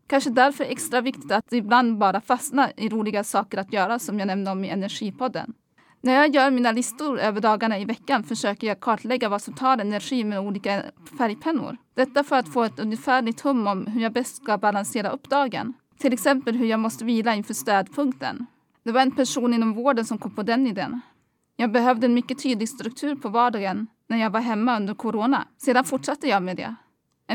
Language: Swedish